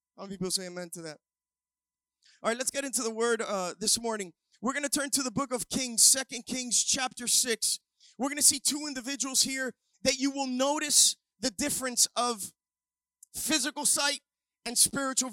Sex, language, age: male, English, 20-39